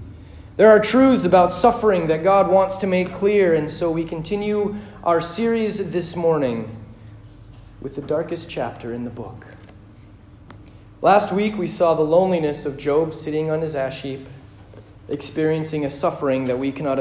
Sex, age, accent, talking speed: male, 40-59, American, 160 wpm